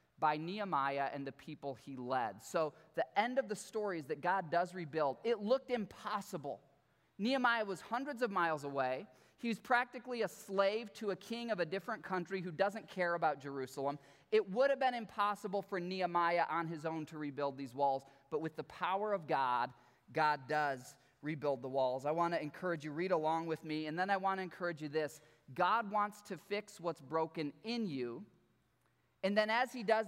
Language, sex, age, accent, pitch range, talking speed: English, male, 20-39, American, 150-205 Hz, 200 wpm